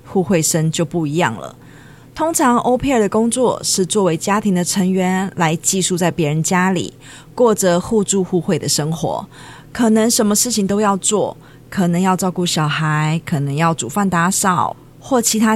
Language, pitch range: Chinese, 165-205 Hz